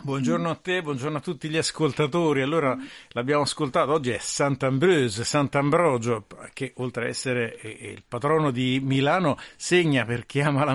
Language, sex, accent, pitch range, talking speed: Italian, male, native, 125-155 Hz, 155 wpm